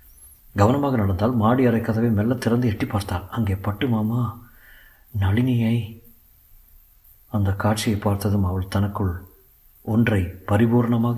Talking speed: 100 wpm